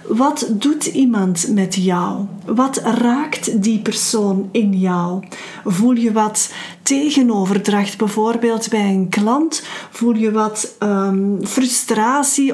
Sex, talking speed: female, 110 wpm